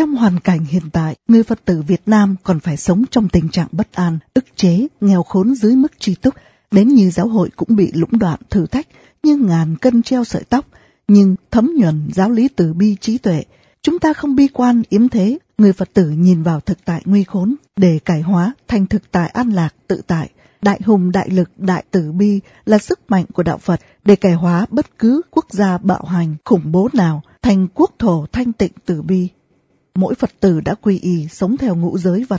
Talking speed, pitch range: 220 wpm, 180-225 Hz